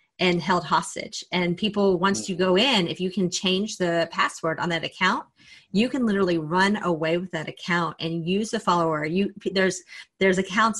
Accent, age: American, 30-49